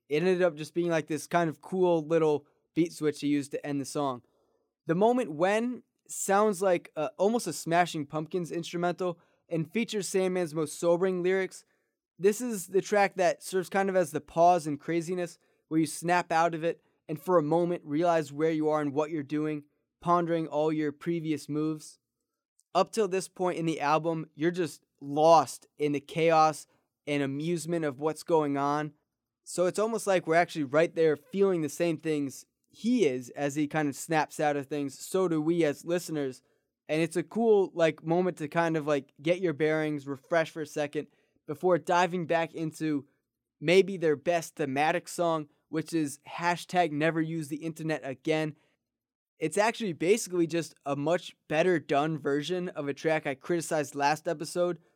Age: 20-39